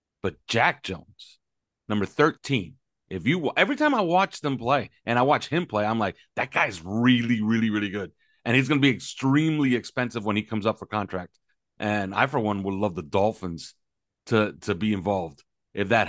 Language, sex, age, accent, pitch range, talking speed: English, male, 40-59, American, 100-135 Hz, 200 wpm